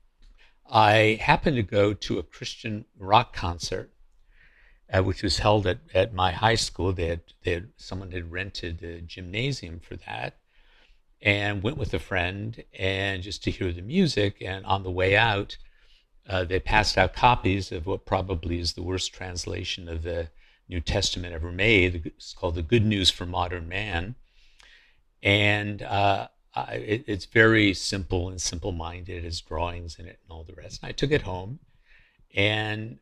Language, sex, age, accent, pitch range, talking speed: English, male, 60-79, American, 90-110 Hz, 175 wpm